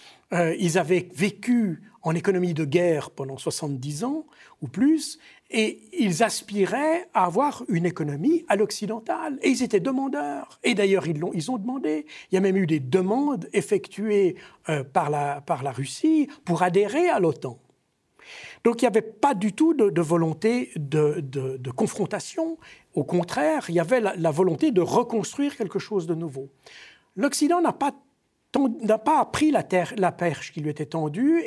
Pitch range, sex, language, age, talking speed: 155-245 Hz, male, French, 60-79, 175 wpm